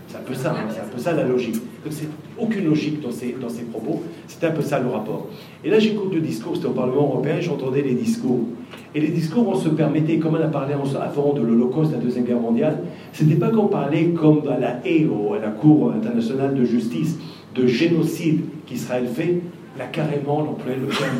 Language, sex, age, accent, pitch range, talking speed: French, male, 40-59, French, 125-170 Hz, 225 wpm